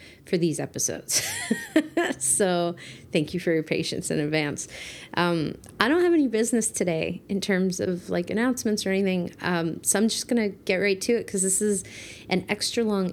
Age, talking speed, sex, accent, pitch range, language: 30-49, 185 wpm, female, American, 175-210 Hz, English